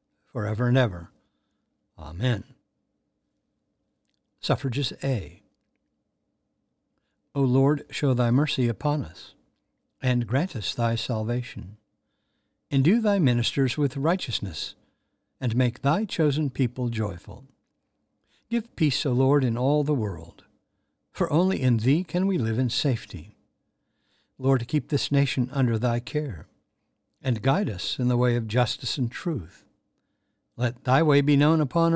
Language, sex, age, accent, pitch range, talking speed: English, male, 60-79, American, 120-145 Hz, 130 wpm